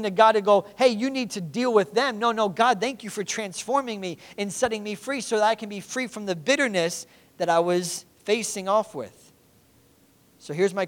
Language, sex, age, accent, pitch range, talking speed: English, male, 40-59, American, 150-200 Hz, 225 wpm